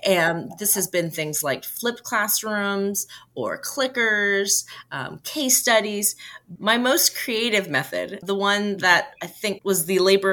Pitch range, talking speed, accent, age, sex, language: 160-210 Hz, 145 wpm, American, 30-49, female, English